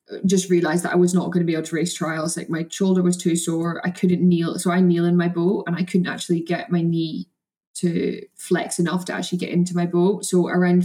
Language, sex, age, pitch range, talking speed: English, female, 10-29, 175-185 Hz, 255 wpm